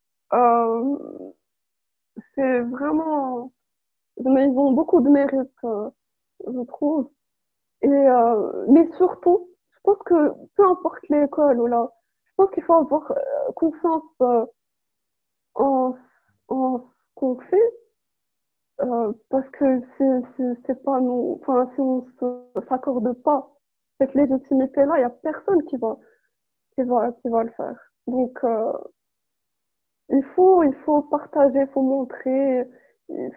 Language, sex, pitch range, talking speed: French, female, 255-330 Hz, 135 wpm